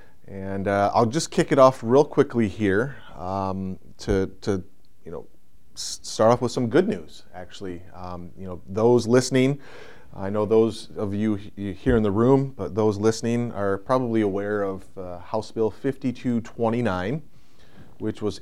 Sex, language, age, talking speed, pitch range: male, English, 30-49, 160 wpm, 95-115 Hz